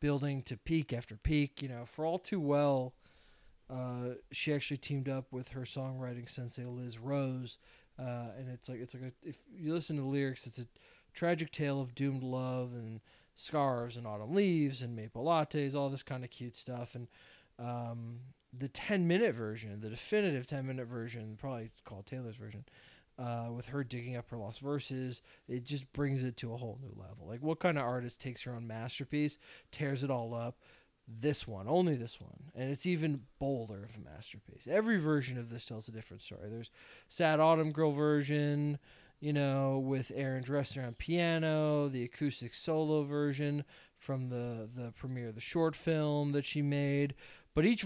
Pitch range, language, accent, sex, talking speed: 120-150 Hz, English, American, male, 185 wpm